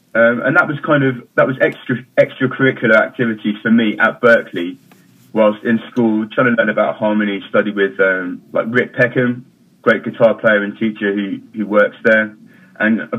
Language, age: English, 20-39